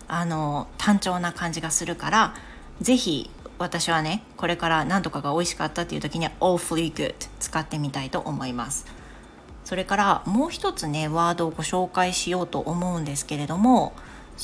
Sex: female